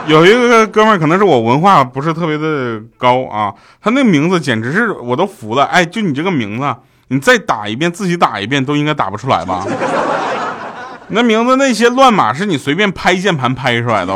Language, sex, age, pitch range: Chinese, male, 20-39, 105-155 Hz